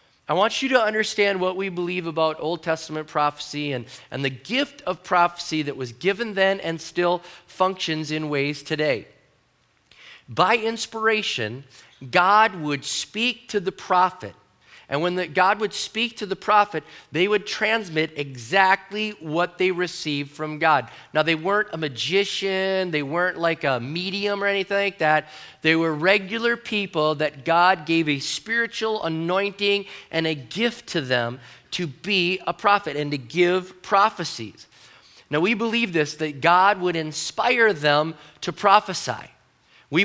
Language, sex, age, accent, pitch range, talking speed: English, male, 40-59, American, 155-205 Hz, 155 wpm